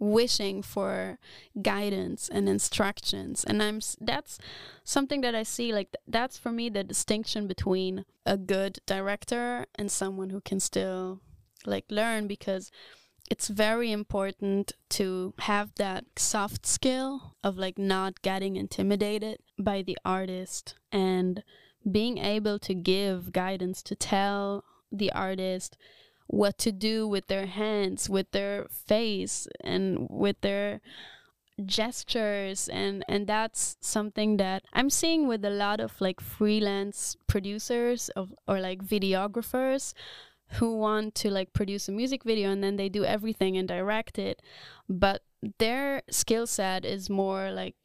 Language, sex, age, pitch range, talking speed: English, female, 20-39, 190-220 Hz, 140 wpm